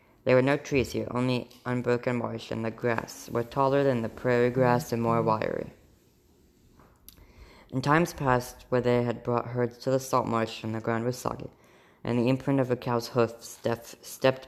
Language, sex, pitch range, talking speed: English, female, 115-125 Hz, 185 wpm